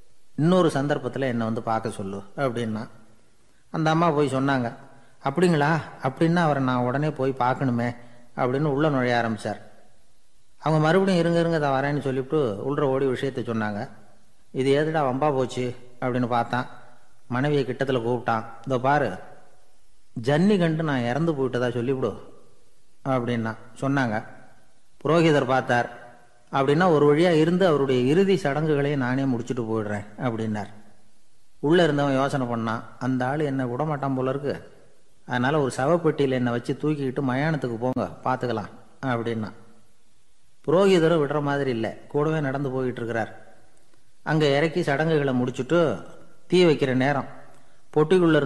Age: 30-49